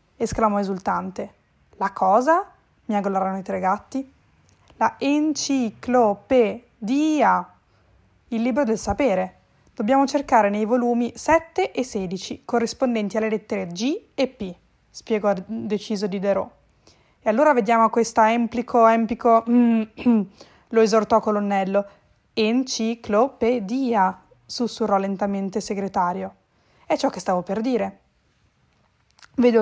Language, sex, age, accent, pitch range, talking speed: Italian, female, 20-39, native, 205-245 Hz, 105 wpm